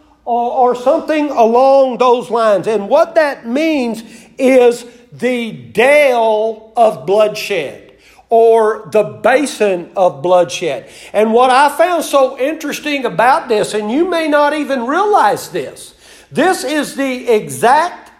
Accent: American